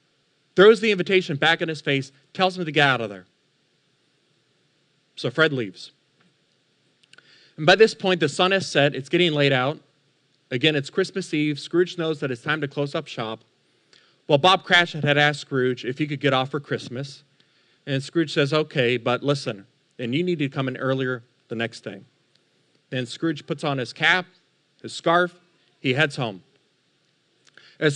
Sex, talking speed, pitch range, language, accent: male, 180 wpm, 130-170 Hz, English, American